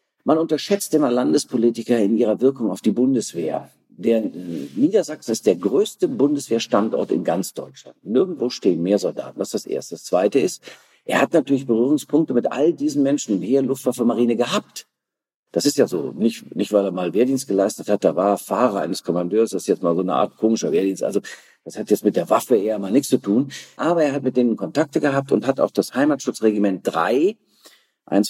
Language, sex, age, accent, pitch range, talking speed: German, male, 50-69, German, 110-160 Hz, 200 wpm